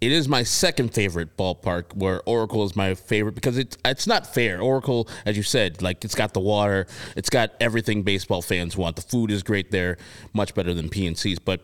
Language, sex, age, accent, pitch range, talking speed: English, male, 20-39, American, 90-115 Hz, 210 wpm